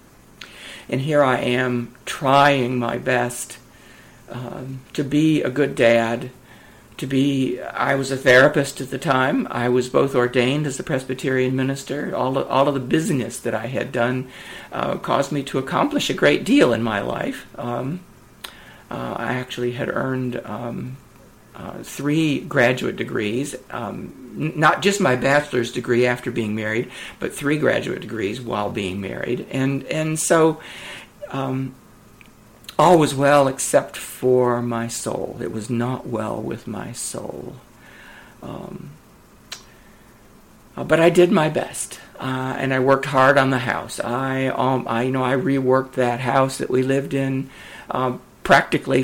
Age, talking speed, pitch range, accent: 60-79, 155 wpm, 120-140 Hz, American